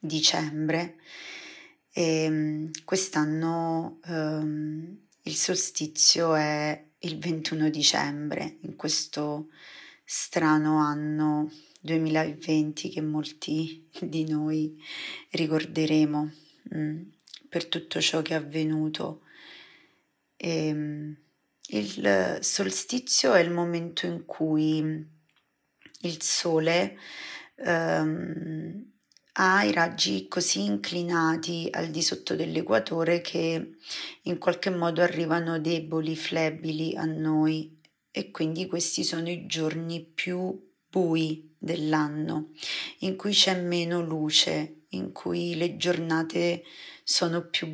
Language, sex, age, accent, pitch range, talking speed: Italian, female, 30-49, native, 155-175 Hz, 90 wpm